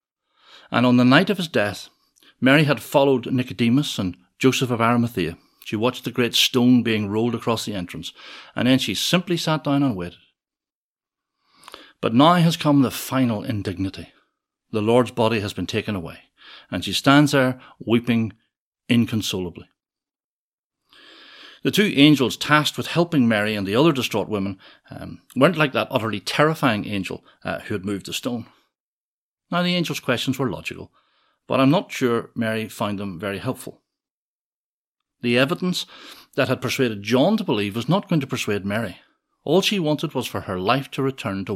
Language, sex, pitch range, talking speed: English, male, 105-135 Hz, 170 wpm